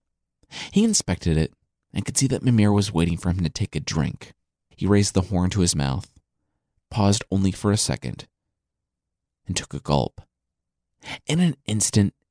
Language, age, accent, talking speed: English, 30-49, American, 170 wpm